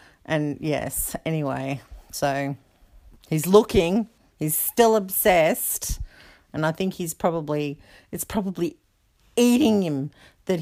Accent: Australian